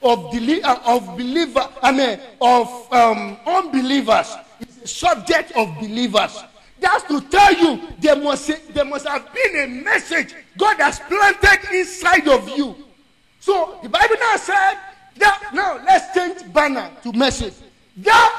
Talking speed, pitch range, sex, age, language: 140 wpm, 265-360 Hz, male, 50-69, English